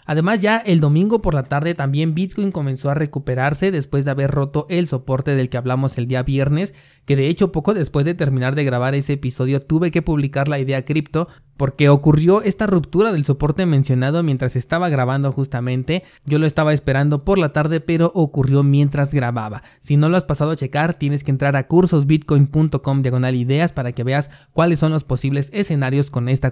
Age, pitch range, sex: 30-49, 135-160 Hz, male